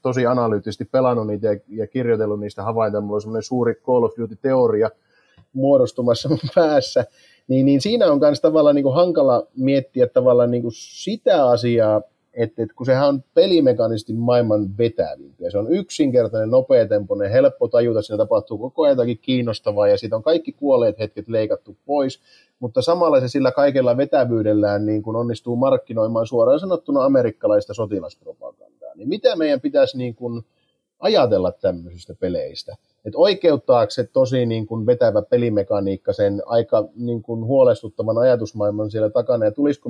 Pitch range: 110-155 Hz